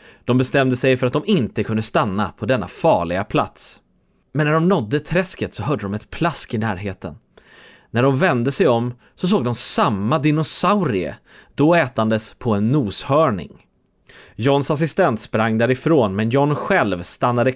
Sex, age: male, 30-49